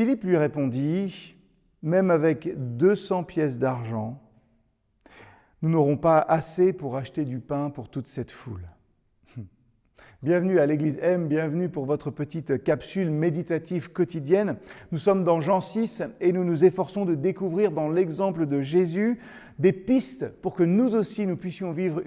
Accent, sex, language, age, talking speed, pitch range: French, male, French, 40-59, 150 wpm, 145-185 Hz